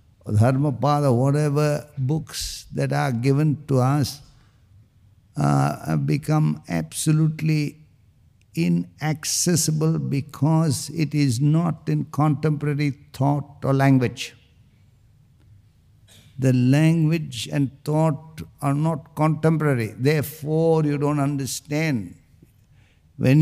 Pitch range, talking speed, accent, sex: 110-145 Hz, 85 wpm, Indian, male